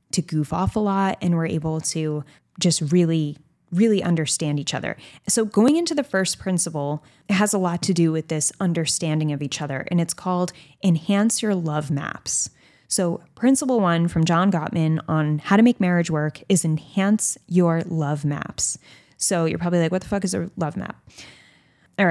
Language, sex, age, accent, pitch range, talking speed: English, female, 10-29, American, 160-200 Hz, 185 wpm